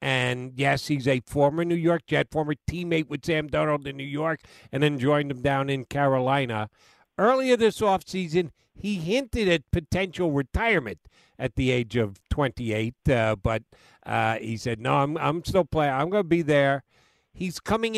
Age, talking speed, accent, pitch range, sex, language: 50-69, 175 wpm, American, 135-180 Hz, male, English